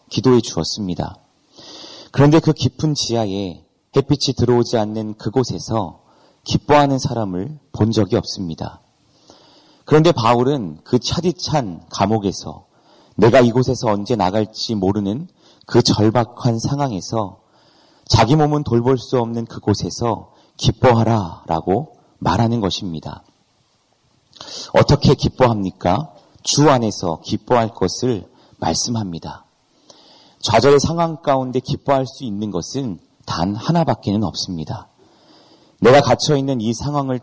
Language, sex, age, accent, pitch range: Korean, male, 40-59, native, 100-135 Hz